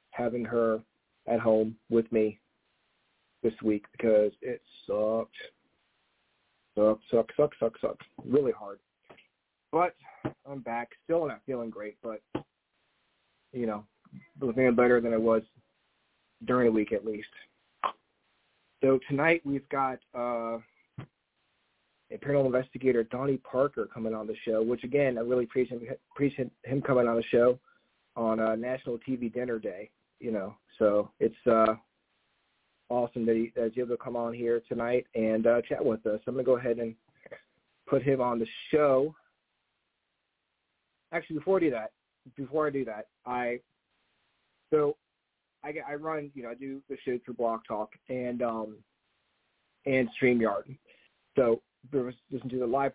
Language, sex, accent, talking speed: English, male, American, 150 wpm